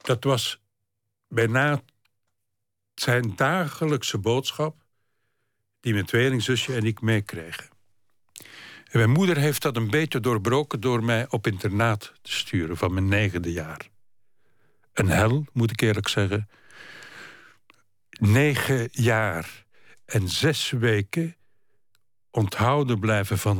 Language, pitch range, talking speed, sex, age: Dutch, 105-135 Hz, 110 wpm, male, 60-79